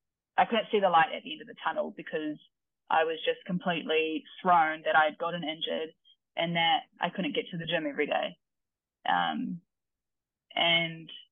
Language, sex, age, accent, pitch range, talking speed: English, female, 20-39, Australian, 160-215 Hz, 175 wpm